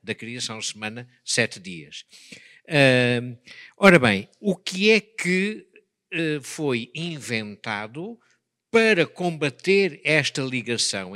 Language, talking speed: Portuguese, 85 wpm